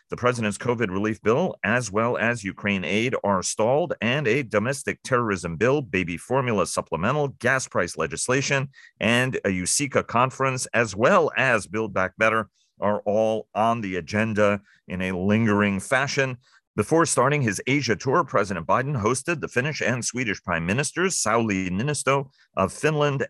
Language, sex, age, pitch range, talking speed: English, male, 40-59, 95-125 Hz, 155 wpm